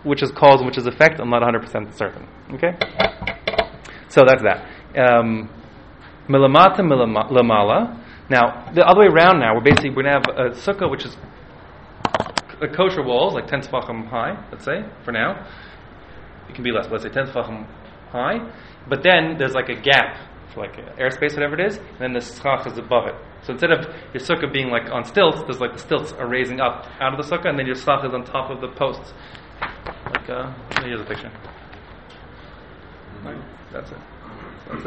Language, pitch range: English, 105-140 Hz